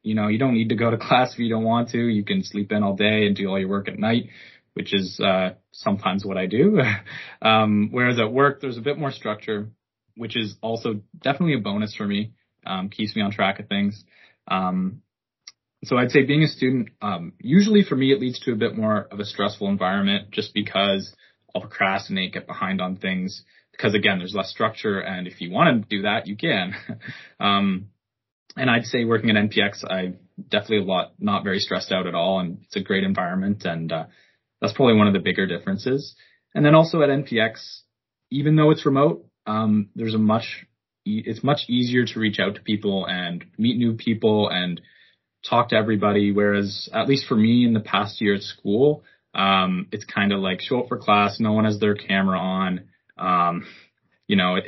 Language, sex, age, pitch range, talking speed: English, male, 20-39, 100-125 Hz, 210 wpm